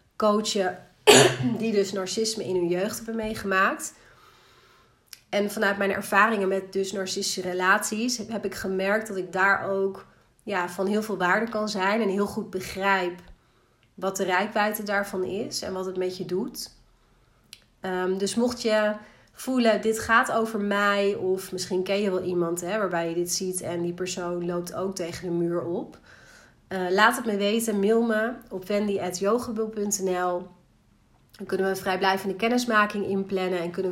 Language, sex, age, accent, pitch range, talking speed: Dutch, female, 30-49, Dutch, 185-215 Hz, 165 wpm